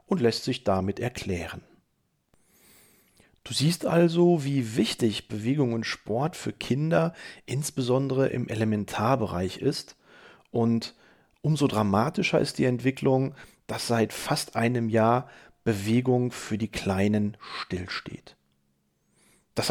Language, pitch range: German, 110-140 Hz